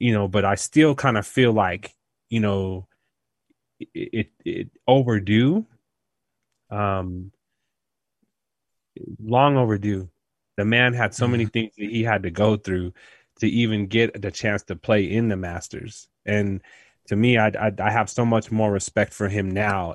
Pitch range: 95-110 Hz